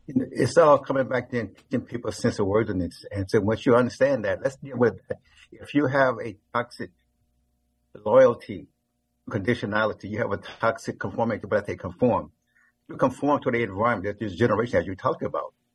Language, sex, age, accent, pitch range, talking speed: English, male, 60-79, American, 105-130 Hz, 190 wpm